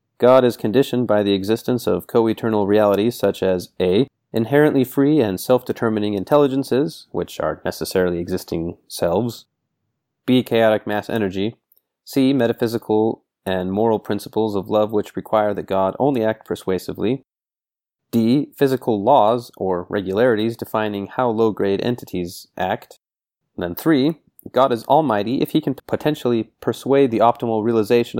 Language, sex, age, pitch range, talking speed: English, male, 30-49, 100-125 Hz, 140 wpm